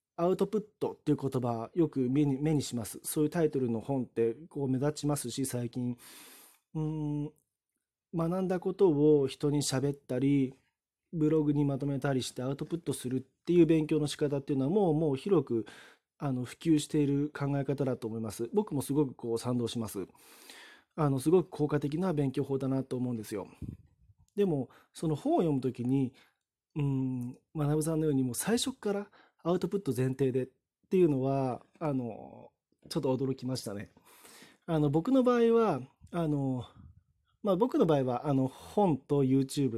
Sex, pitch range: male, 125-155 Hz